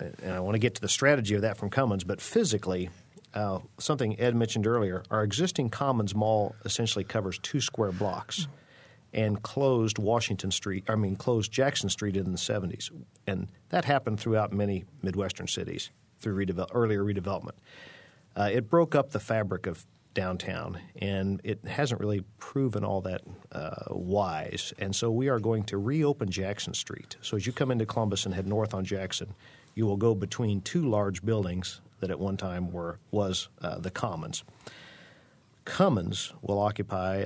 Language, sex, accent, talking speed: English, male, American, 175 wpm